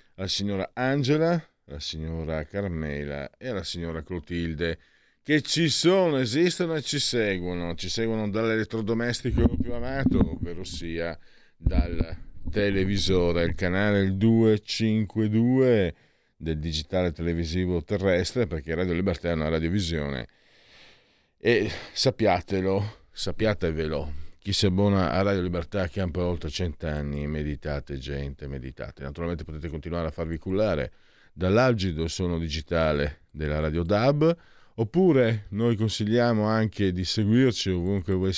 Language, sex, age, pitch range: Italian, male, 50-69, 80-105 Hz